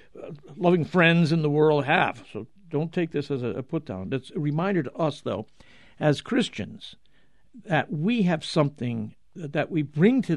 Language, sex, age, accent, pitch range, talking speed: English, male, 60-79, American, 135-170 Hz, 170 wpm